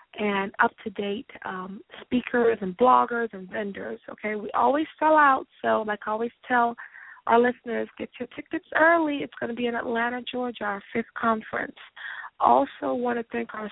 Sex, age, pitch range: female, 20-39, 215-265 Hz